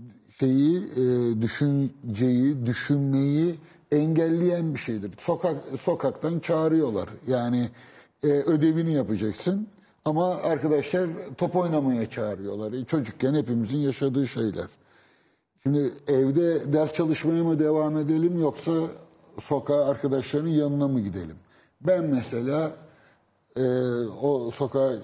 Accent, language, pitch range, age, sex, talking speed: native, Turkish, 110-145 Hz, 60-79, male, 90 wpm